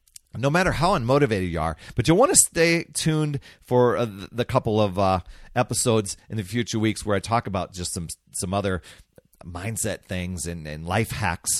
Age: 40-59